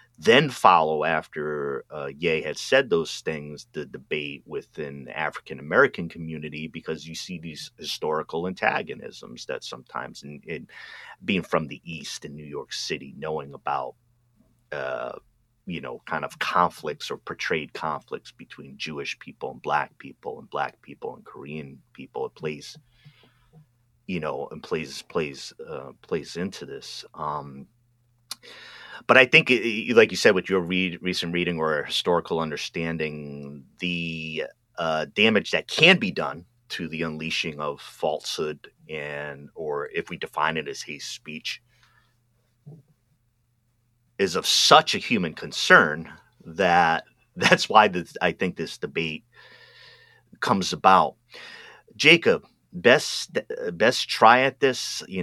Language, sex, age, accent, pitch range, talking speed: English, male, 30-49, American, 75-120 Hz, 135 wpm